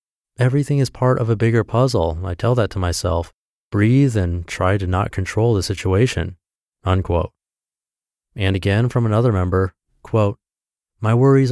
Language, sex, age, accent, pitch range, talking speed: English, male, 30-49, American, 90-115 Hz, 150 wpm